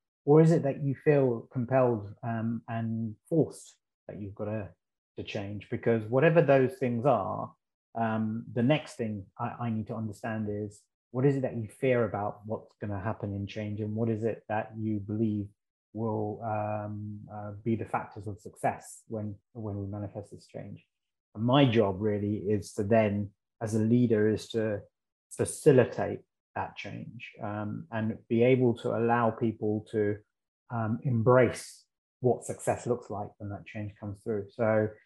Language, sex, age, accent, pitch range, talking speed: English, male, 20-39, British, 105-120 Hz, 170 wpm